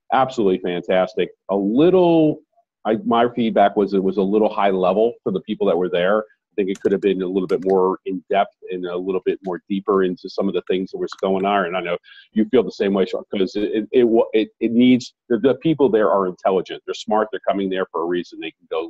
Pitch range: 95-140 Hz